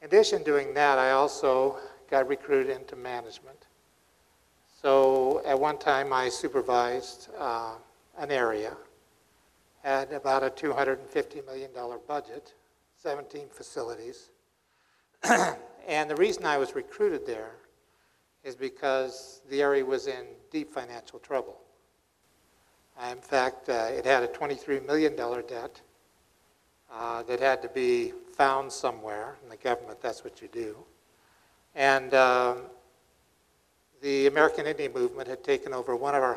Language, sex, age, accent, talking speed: English, male, 60-79, American, 130 wpm